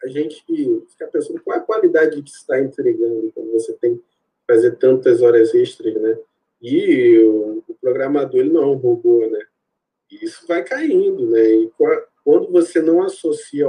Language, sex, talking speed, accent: Portuguese, male, 175 wpm, Brazilian